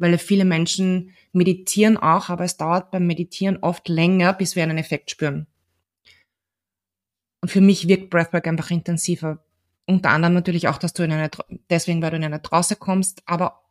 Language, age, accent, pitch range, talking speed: German, 20-39, German, 115-185 Hz, 175 wpm